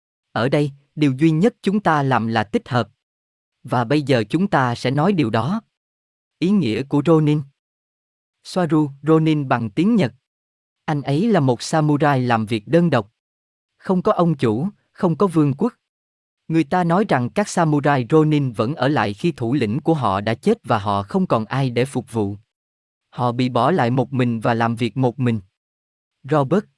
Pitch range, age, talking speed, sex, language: 115-165 Hz, 20-39, 185 wpm, male, Vietnamese